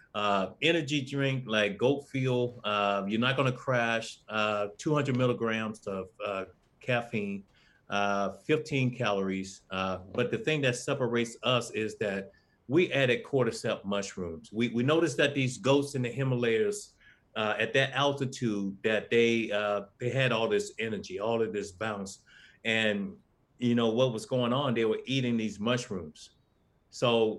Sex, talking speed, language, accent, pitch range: male, 155 wpm, English, American, 105-135 Hz